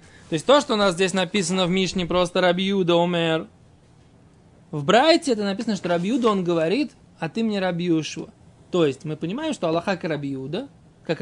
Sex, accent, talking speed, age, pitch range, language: male, native, 180 wpm, 20-39, 160-215 Hz, Russian